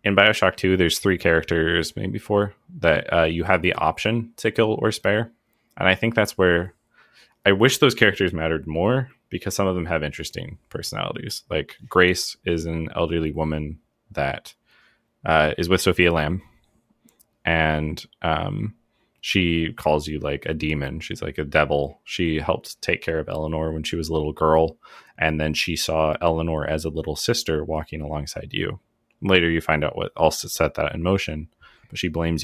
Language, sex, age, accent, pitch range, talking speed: English, male, 20-39, American, 80-100 Hz, 180 wpm